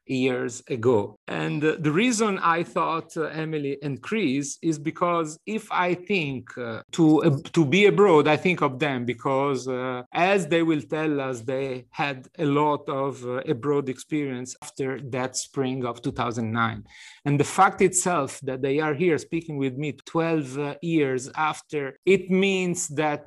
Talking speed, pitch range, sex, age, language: 170 wpm, 125-160 Hz, male, 40-59, English